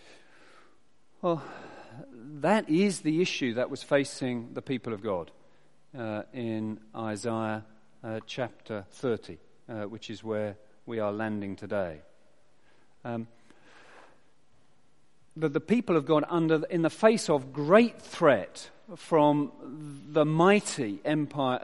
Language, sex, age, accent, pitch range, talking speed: English, male, 40-59, British, 115-155 Hz, 120 wpm